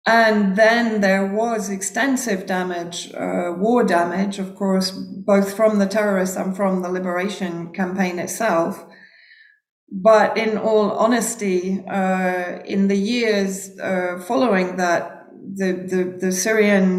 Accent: British